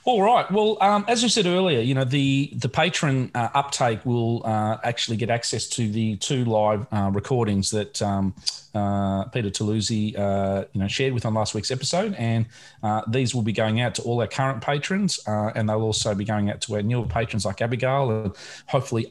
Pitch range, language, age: 110-130 Hz, English, 30-49